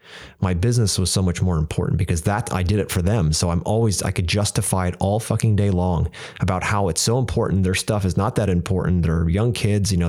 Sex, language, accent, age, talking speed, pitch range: male, English, American, 30-49, 250 wpm, 90-100 Hz